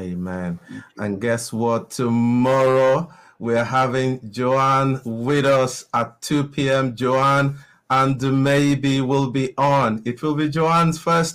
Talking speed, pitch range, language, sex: 135 wpm, 120-145 Hz, English, male